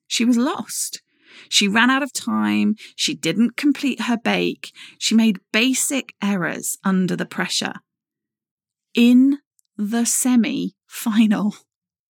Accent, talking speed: British, 120 wpm